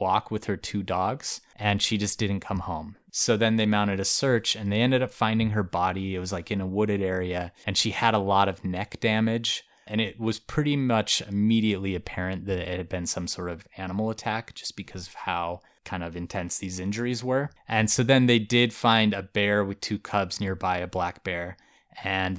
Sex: male